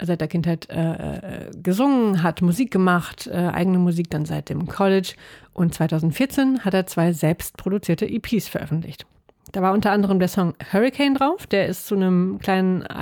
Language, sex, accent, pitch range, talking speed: German, female, German, 160-200 Hz, 165 wpm